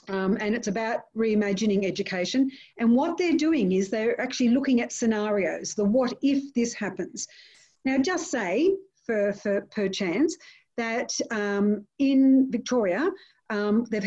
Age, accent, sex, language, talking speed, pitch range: 50-69, Australian, female, English, 145 wpm, 205-260 Hz